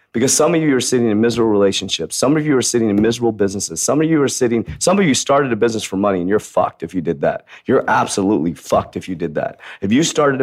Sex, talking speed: male, 270 wpm